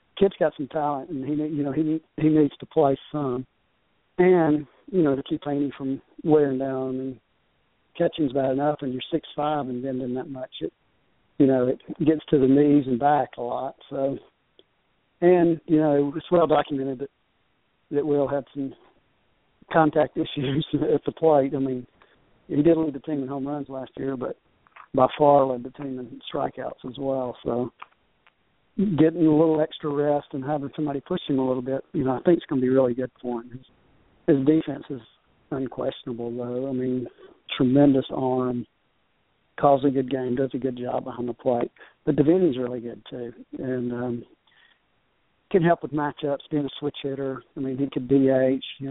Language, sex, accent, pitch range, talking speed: English, male, American, 130-150 Hz, 190 wpm